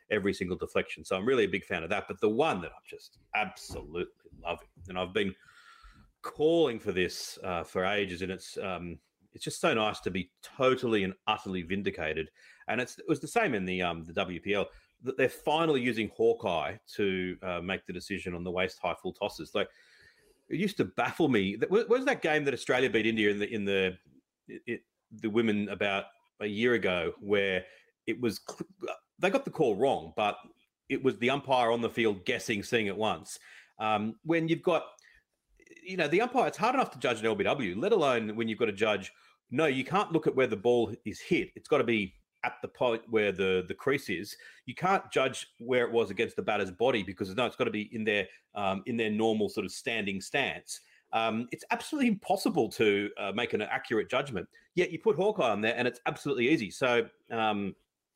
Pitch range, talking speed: 100-145 Hz, 215 wpm